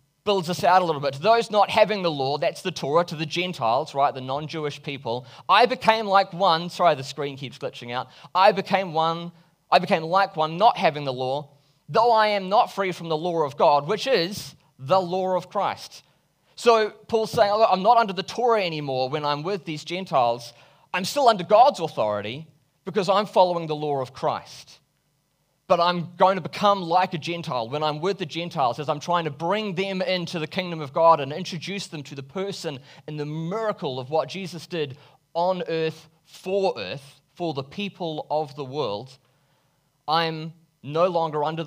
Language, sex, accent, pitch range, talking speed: English, male, Australian, 145-185 Hz, 200 wpm